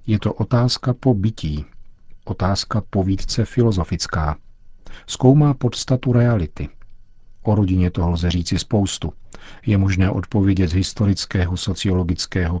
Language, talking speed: Czech, 110 wpm